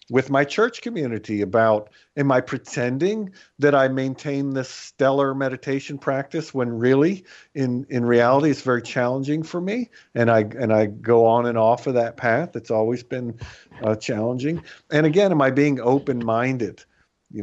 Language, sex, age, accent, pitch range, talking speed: English, male, 50-69, American, 110-140 Hz, 170 wpm